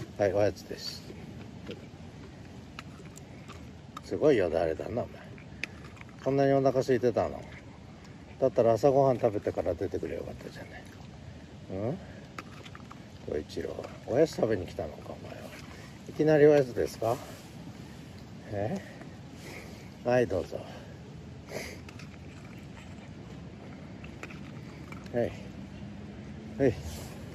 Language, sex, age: Japanese, male, 60-79